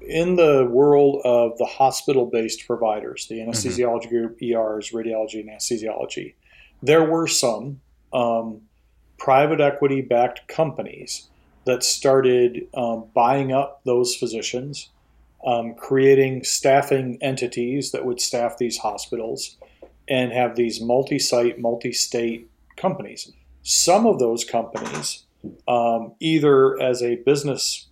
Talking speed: 120 wpm